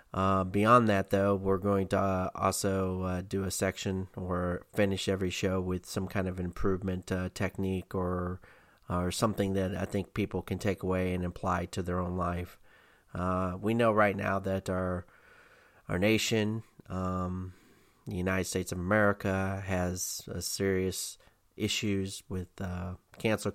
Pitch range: 90-100 Hz